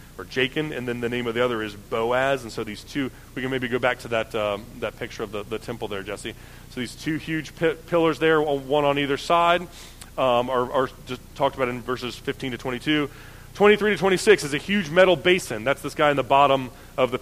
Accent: American